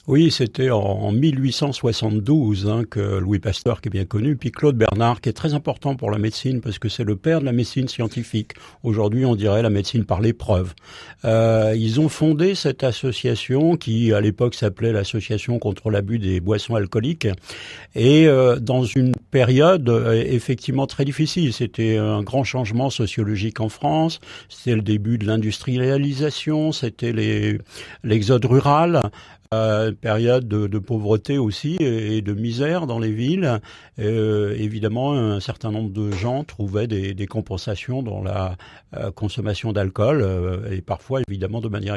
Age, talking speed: 50-69, 160 wpm